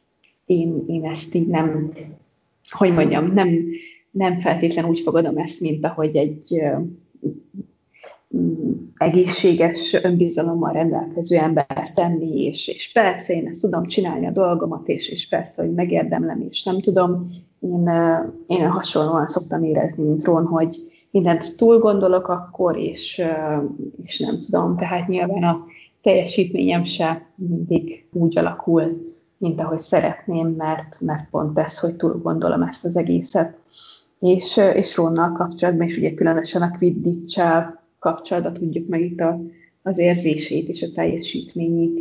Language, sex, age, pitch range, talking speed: Hungarian, female, 20-39, 160-180 Hz, 130 wpm